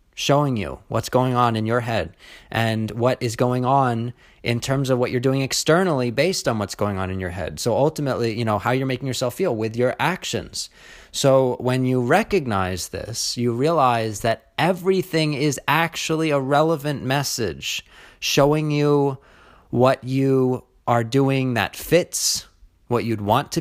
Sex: male